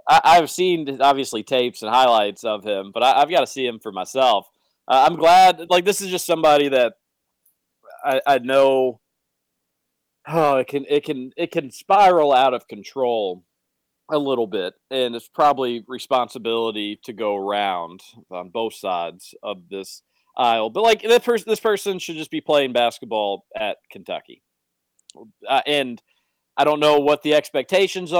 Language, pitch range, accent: English, 120-165 Hz, American